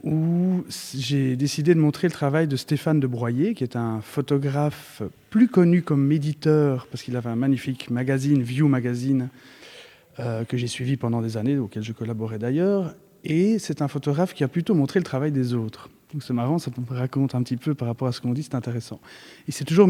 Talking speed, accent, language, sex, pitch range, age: 210 wpm, French, French, male, 120-150 Hz, 30-49